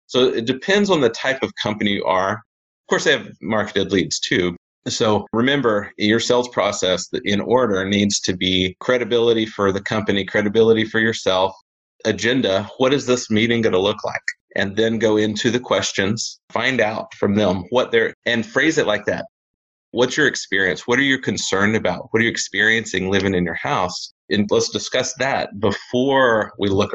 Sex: male